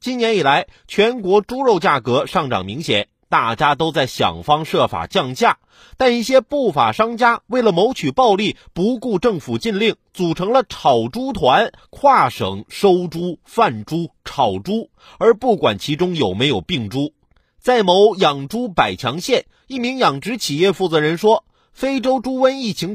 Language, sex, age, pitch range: Chinese, male, 30-49, 170-245 Hz